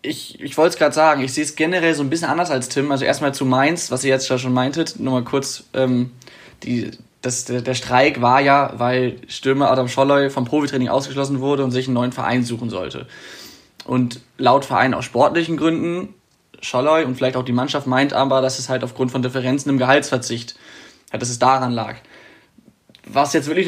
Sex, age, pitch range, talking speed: male, 10-29, 125-140 Hz, 205 wpm